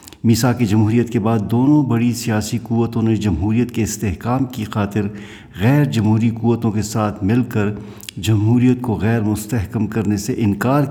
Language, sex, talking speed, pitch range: Urdu, male, 160 wpm, 100-120 Hz